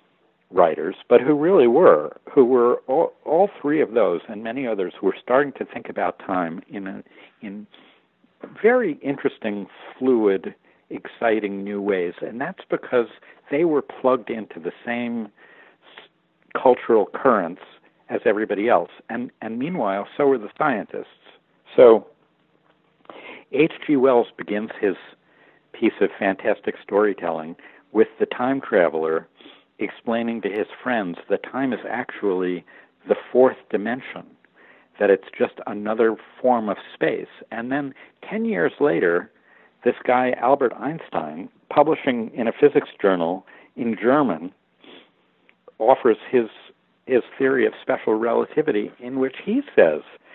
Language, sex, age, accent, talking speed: English, male, 60-79, American, 130 wpm